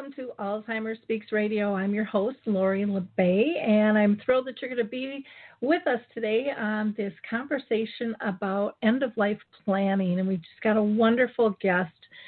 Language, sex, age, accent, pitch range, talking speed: English, female, 40-59, American, 195-230 Hz, 165 wpm